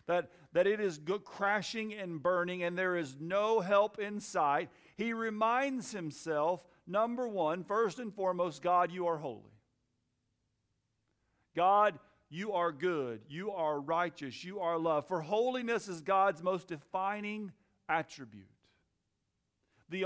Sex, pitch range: male, 135-210 Hz